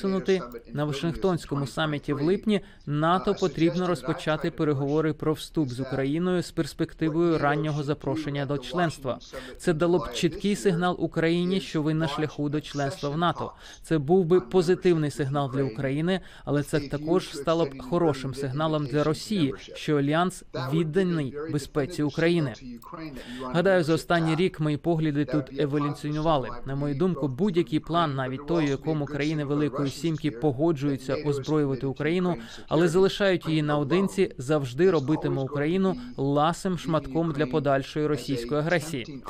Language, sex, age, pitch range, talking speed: Ukrainian, male, 20-39, 145-170 Hz, 135 wpm